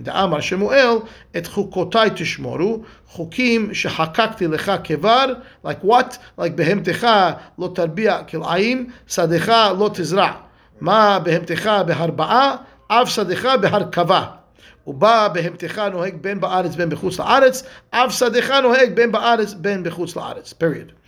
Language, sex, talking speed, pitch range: English, male, 75 wpm, 175-230 Hz